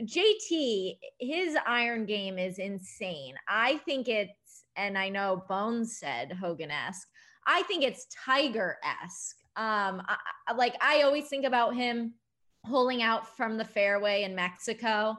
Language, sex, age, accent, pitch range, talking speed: English, female, 20-39, American, 205-265 Hz, 135 wpm